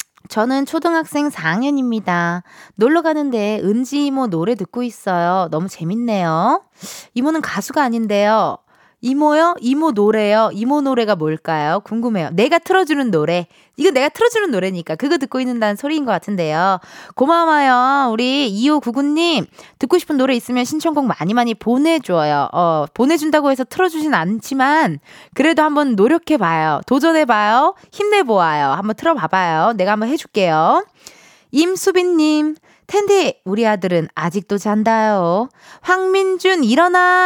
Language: Korean